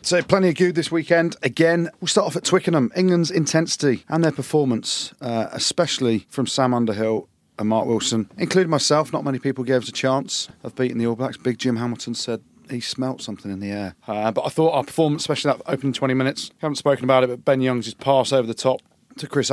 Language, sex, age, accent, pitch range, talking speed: English, male, 30-49, British, 120-155 Hz, 225 wpm